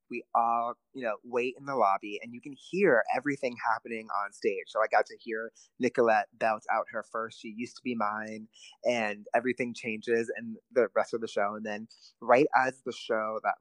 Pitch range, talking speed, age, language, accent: 110-140 Hz, 205 wpm, 30-49, English, American